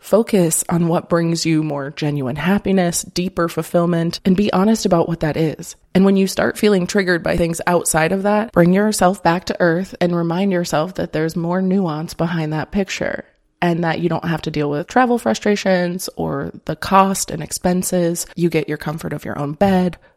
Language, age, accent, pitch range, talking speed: English, 20-39, American, 165-185 Hz, 195 wpm